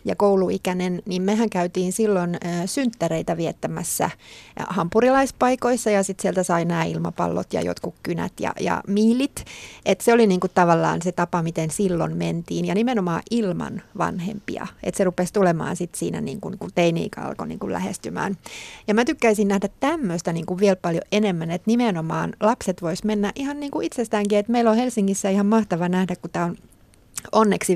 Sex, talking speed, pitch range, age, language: female, 165 wpm, 175-220 Hz, 30-49, Finnish